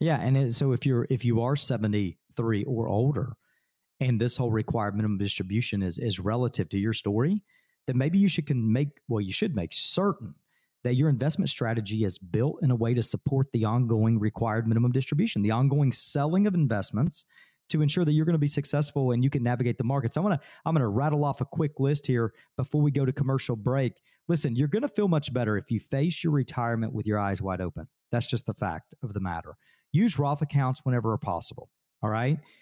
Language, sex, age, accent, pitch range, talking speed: English, male, 40-59, American, 115-155 Hz, 220 wpm